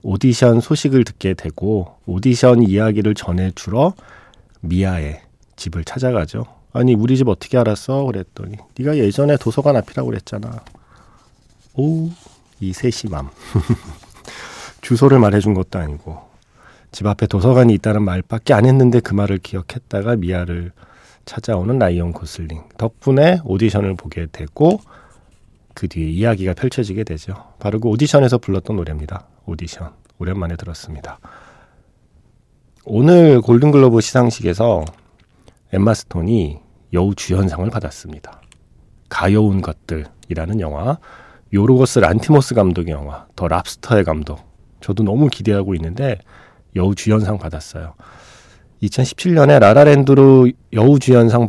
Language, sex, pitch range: Korean, male, 90-125 Hz